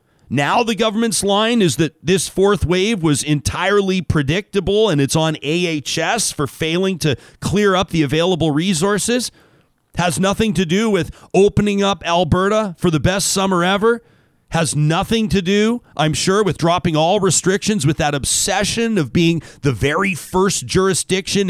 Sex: male